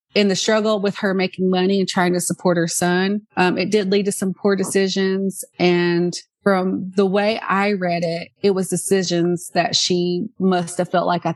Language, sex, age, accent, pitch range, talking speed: English, female, 30-49, American, 175-200 Hz, 200 wpm